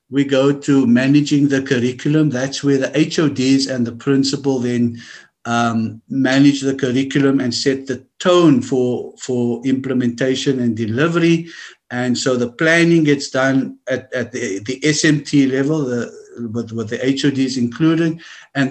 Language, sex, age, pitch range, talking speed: English, male, 50-69, 120-145 Hz, 150 wpm